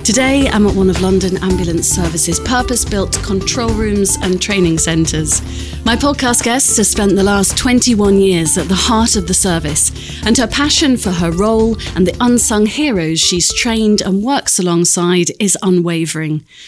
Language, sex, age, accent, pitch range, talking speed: English, female, 30-49, British, 175-225 Hz, 165 wpm